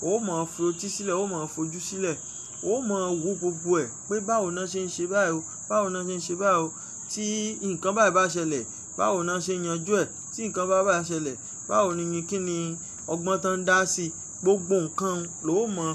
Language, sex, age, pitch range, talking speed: English, male, 20-39, 165-210 Hz, 180 wpm